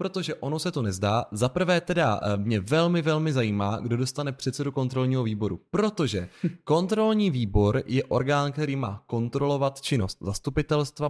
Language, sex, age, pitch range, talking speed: Czech, male, 20-39, 110-145 Hz, 140 wpm